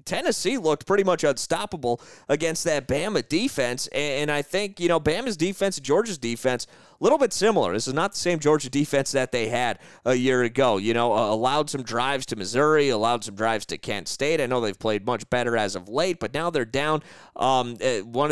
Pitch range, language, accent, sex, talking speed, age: 125-165 Hz, English, American, male, 210 wpm, 30-49